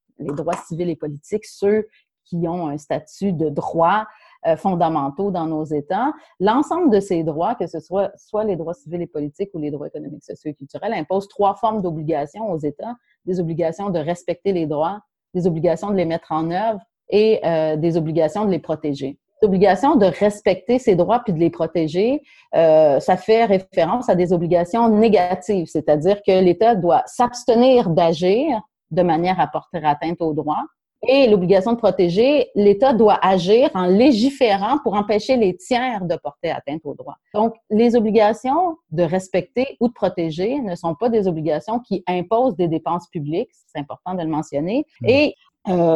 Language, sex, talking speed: French, female, 180 wpm